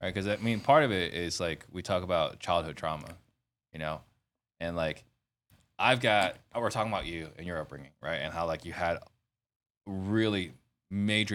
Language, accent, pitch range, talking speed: English, American, 85-115 Hz, 185 wpm